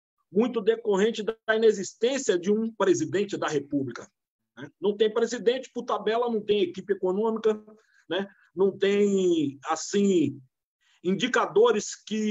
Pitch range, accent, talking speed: 175-220 Hz, Brazilian, 120 wpm